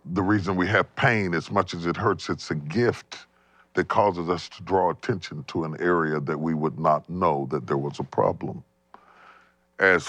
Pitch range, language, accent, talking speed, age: 75-100 Hz, English, American, 195 wpm, 40-59